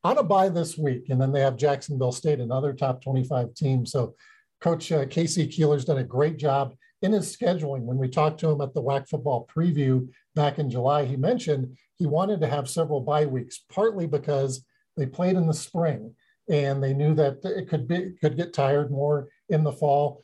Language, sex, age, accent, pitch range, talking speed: English, male, 50-69, American, 135-155 Hz, 205 wpm